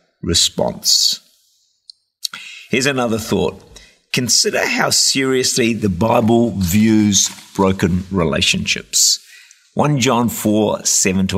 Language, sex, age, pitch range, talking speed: English, male, 50-69, 95-130 Hz, 90 wpm